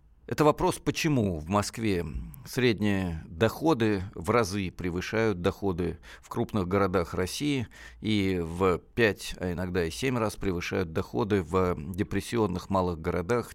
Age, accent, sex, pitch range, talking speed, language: 50-69, native, male, 90-110 Hz, 130 wpm, Russian